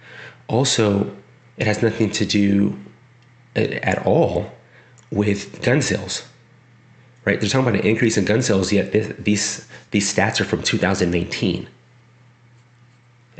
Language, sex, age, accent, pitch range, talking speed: English, male, 30-49, American, 90-115 Hz, 125 wpm